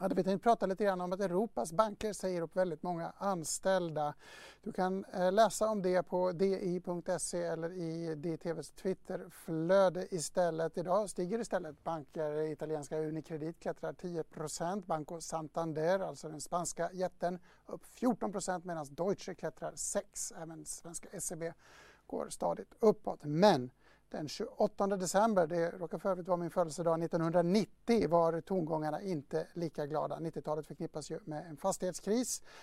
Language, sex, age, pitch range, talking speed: English, male, 60-79, 160-185 Hz, 140 wpm